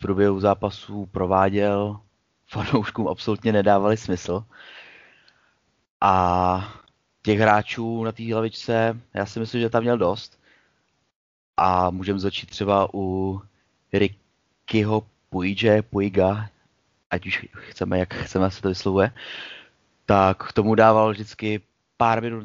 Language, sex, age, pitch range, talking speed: Czech, male, 30-49, 95-110 Hz, 110 wpm